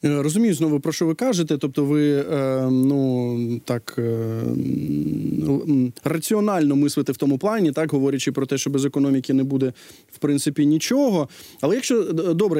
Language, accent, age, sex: Ukrainian, native, 20-39, male